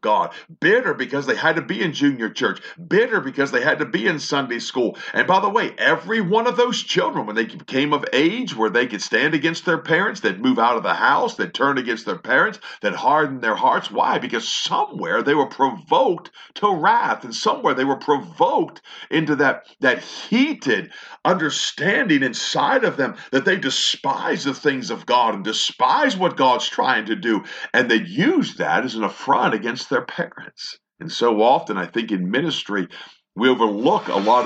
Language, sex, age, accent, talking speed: English, male, 50-69, American, 195 wpm